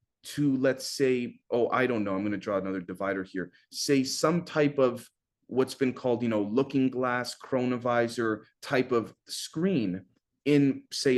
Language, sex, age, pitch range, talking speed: English, male, 30-49, 120-145 Hz, 165 wpm